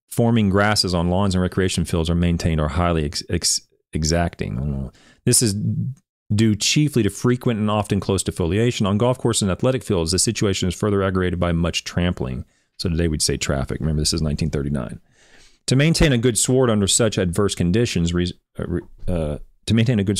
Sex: male